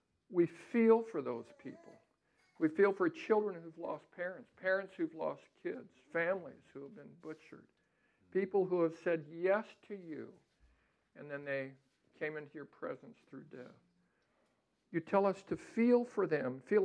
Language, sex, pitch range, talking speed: English, male, 135-195 Hz, 155 wpm